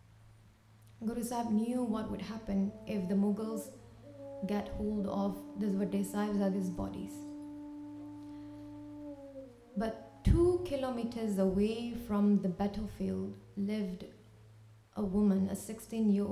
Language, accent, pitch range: English, Indian, 185-240 Hz